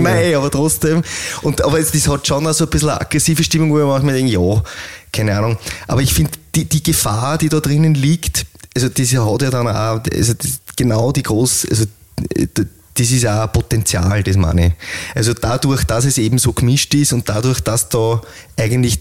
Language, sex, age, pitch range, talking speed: German, male, 20-39, 100-130 Hz, 200 wpm